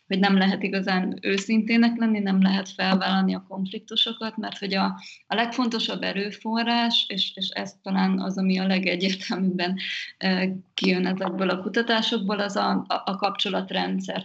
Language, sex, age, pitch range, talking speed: Hungarian, female, 20-39, 190-215 Hz, 145 wpm